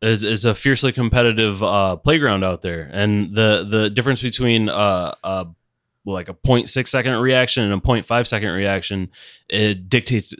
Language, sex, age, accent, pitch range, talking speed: English, male, 20-39, American, 95-120 Hz, 165 wpm